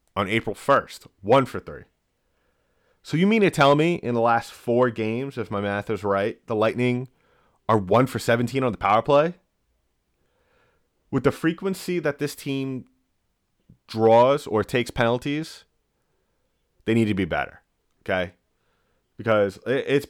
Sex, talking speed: male, 150 wpm